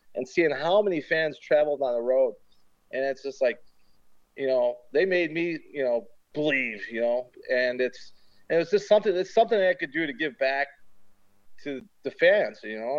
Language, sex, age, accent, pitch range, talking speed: English, male, 40-59, American, 125-155 Hz, 200 wpm